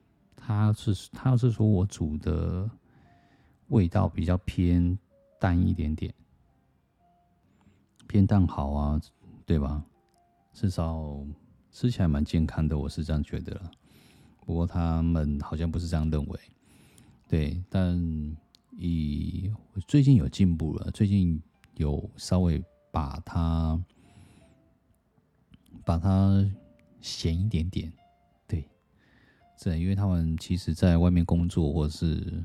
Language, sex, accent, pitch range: Chinese, male, native, 75-95 Hz